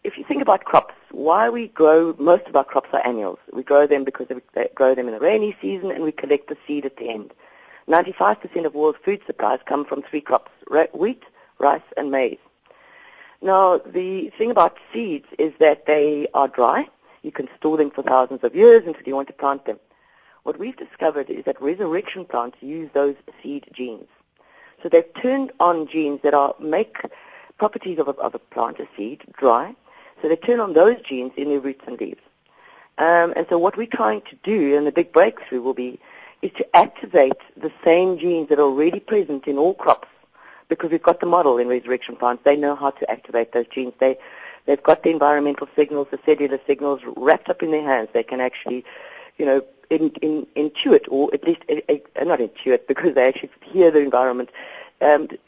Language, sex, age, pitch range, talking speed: English, female, 50-69, 140-205 Hz, 195 wpm